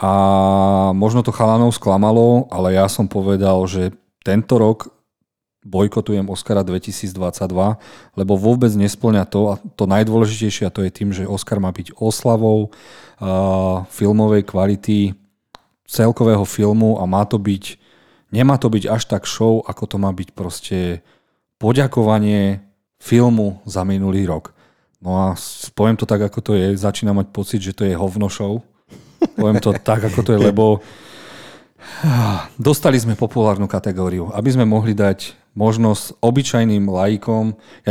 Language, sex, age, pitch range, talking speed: Slovak, male, 40-59, 100-110 Hz, 145 wpm